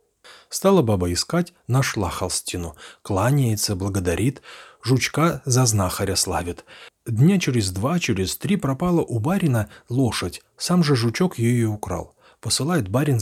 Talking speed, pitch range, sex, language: 125 wpm, 100-155 Hz, male, Russian